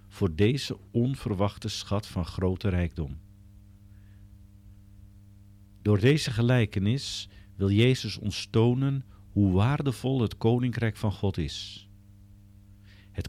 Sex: male